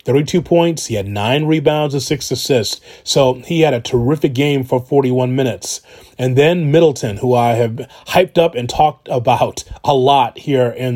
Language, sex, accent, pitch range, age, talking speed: English, male, American, 125-155 Hz, 30-49, 180 wpm